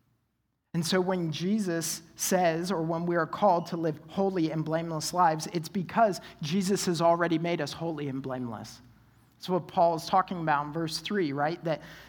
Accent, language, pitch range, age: American, English, 150-195 Hz, 50-69